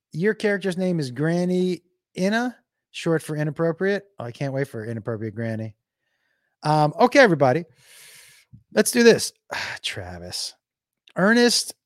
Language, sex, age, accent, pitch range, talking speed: English, male, 30-49, American, 130-175 Hz, 120 wpm